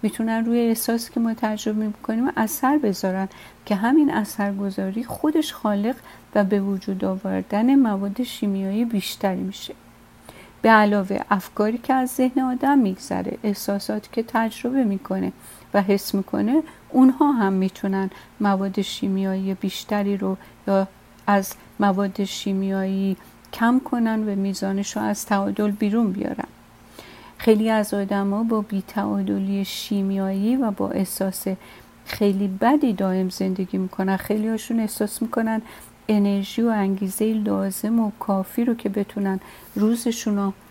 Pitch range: 195-225 Hz